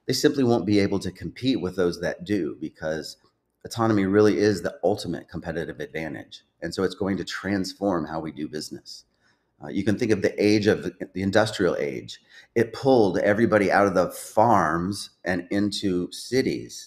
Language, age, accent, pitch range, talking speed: English, 30-49, American, 90-105 Hz, 180 wpm